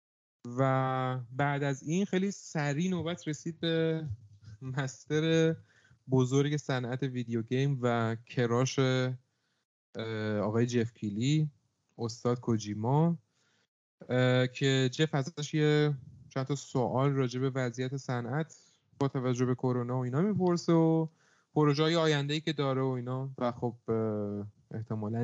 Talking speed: 115 wpm